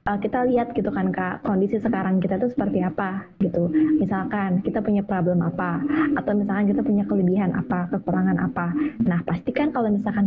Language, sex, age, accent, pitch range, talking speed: English, female, 20-39, Indonesian, 190-235 Hz, 175 wpm